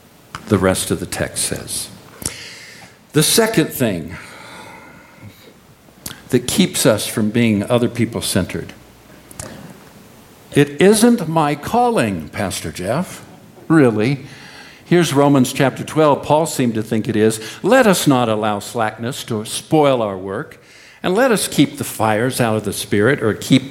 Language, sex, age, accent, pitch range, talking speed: English, male, 60-79, American, 105-150 Hz, 140 wpm